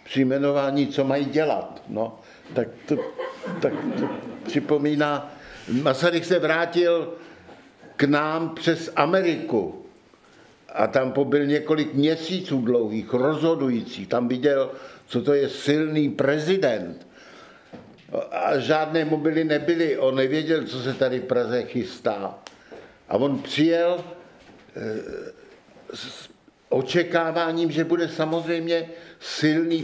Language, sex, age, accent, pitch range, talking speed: Czech, male, 60-79, native, 125-155 Hz, 105 wpm